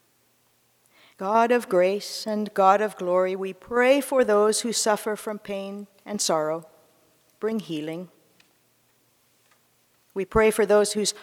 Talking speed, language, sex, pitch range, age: 130 wpm, English, female, 175-230 Hz, 50-69